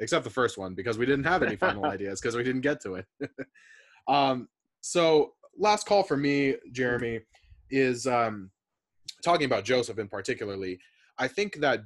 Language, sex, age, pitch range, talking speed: English, male, 20-39, 95-130 Hz, 170 wpm